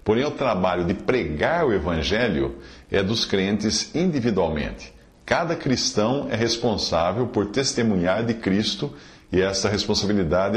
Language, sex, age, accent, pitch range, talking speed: Portuguese, male, 50-69, Brazilian, 90-125 Hz, 125 wpm